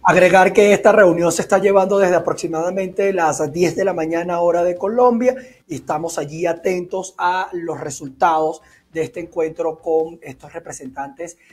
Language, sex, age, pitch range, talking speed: Spanish, male, 30-49, 160-195 Hz, 155 wpm